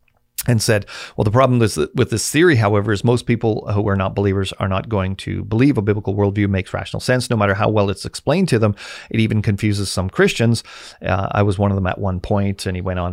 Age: 40-59